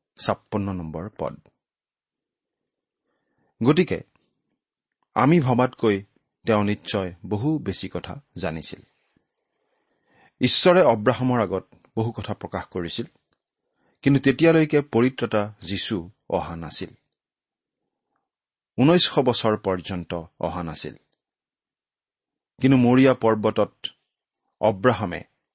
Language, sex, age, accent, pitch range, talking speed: Bengali, male, 40-59, native, 95-130 Hz, 75 wpm